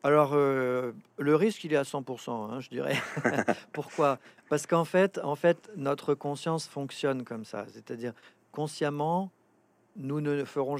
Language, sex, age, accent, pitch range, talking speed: French, male, 40-59, French, 130-165 Hz, 150 wpm